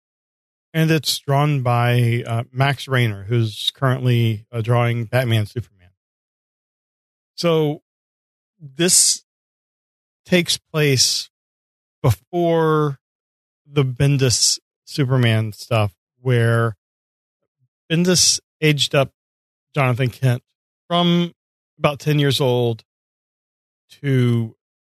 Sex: male